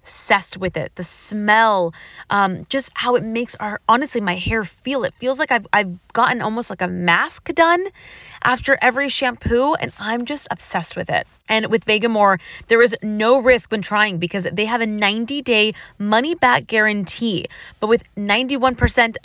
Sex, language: female, English